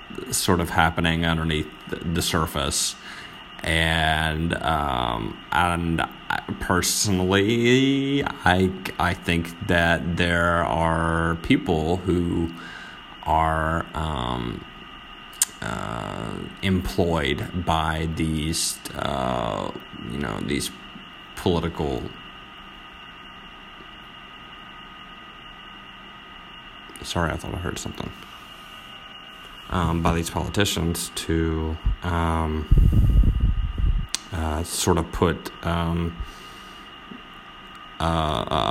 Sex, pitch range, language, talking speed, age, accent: male, 80-85 Hz, English, 75 wpm, 30-49, American